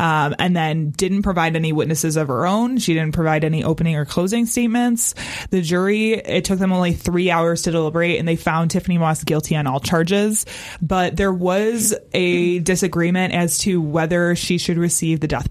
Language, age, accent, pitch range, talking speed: English, 20-39, American, 160-195 Hz, 195 wpm